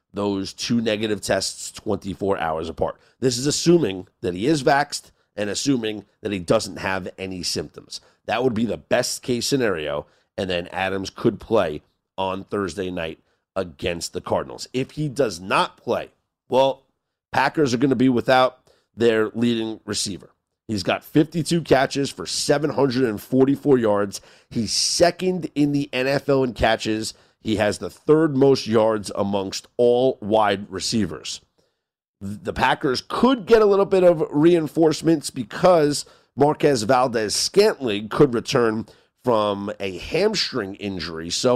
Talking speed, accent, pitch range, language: 140 wpm, American, 100-140 Hz, English